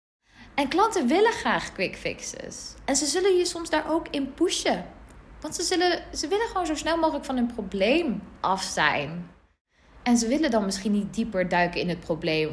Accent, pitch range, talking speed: Dutch, 205-305 Hz, 185 wpm